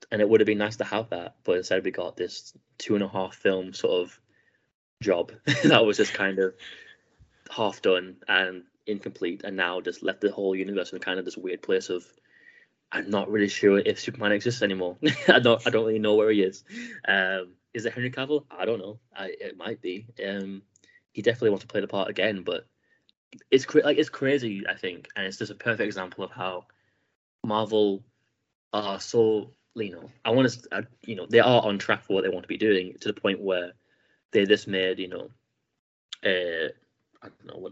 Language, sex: English, male